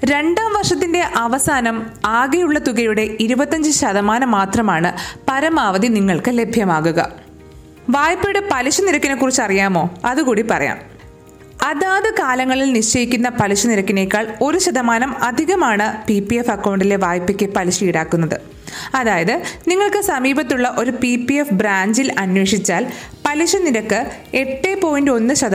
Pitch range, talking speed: 210-295 Hz, 105 wpm